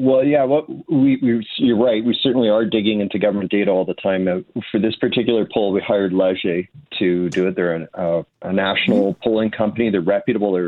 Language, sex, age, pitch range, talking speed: English, male, 40-59, 95-115 Hz, 210 wpm